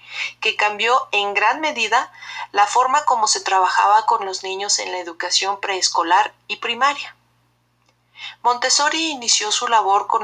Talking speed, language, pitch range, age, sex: 140 wpm, Spanish, 195-255 Hz, 40-59, female